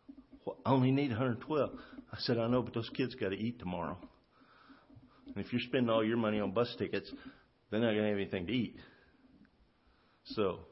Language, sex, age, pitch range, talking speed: English, male, 50-69, 105-130 Hz, 195 wpm